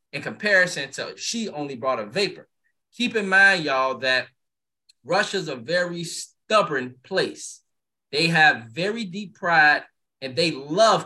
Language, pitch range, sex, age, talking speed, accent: English, 135-190 Hz, male, 20-39, 140 wpm, American